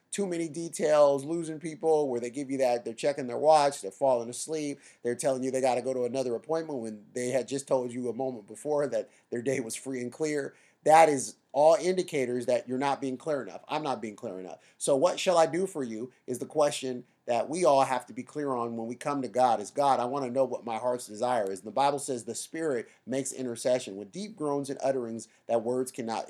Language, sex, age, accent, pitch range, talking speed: English, male, 30-49, American, 120-150 Hz, 240 wpm